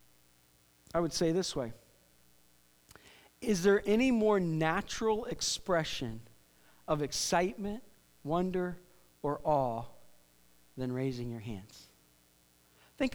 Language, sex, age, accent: English, male, 40-59, American